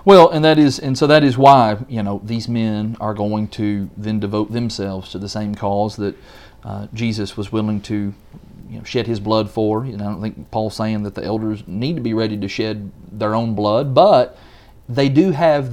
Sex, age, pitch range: male, 30-49, 110-160 Hz